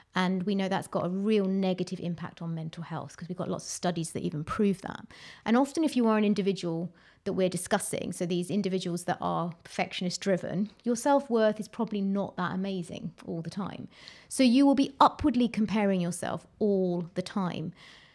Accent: British